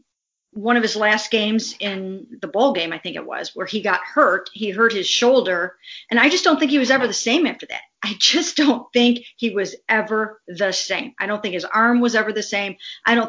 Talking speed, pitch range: 240 wpm, 190-235 Hz